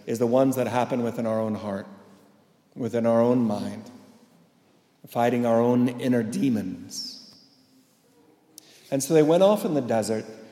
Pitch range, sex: 125-150 Hz, male